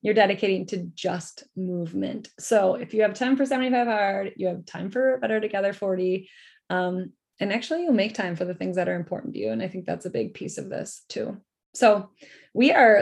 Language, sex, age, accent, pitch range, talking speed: English, female, 20-39, American, 190-220 Hz, 215 wpm